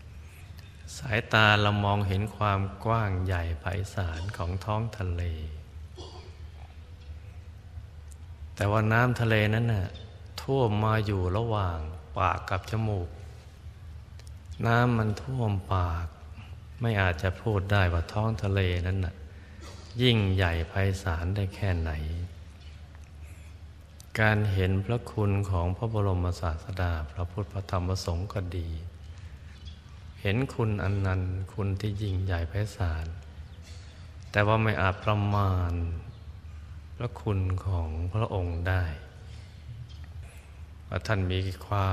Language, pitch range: Thai, 85-105 Hz